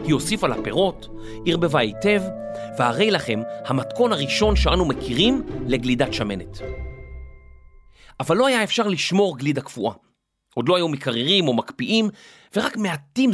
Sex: male